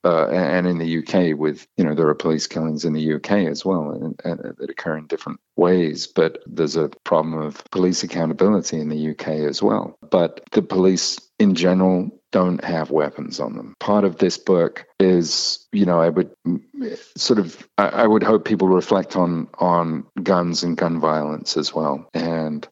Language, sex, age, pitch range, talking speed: English, male, 50-69, 80-95 Hz, 190 wpm